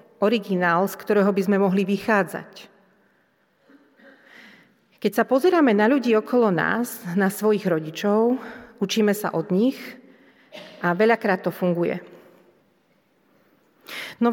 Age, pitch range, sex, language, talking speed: 40-59, 190-235 Hz, female, Slovak, 110 wpm